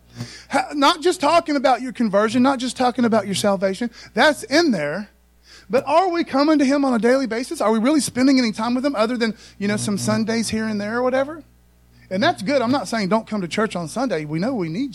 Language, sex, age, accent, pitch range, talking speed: English, male, 30-49, American, 180-260 Hz, 240 wpm